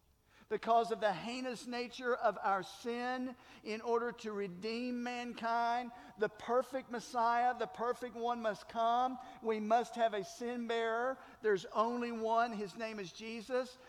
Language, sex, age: English, male, 50-69